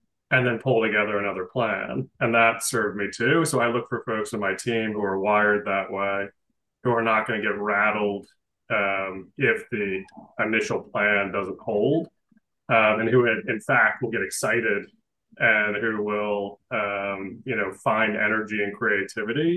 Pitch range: 100-115 Hz